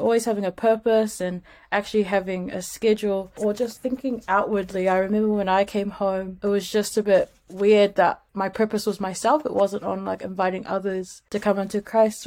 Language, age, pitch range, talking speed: English, 20-39, 185-205 Hz, 195 wpm